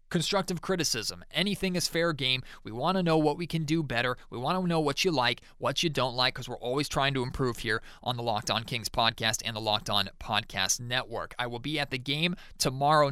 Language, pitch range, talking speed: English, 120-155 Hz, 240 wpm